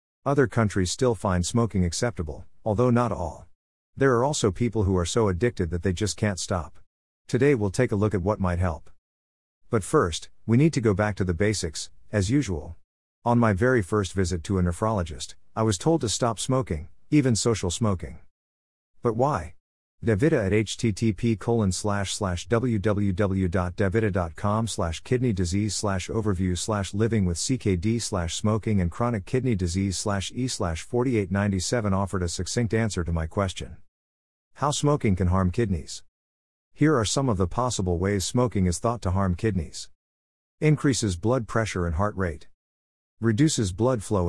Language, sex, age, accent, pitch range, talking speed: English, male, 50-69, American, 90-115 Hz, 165 wpm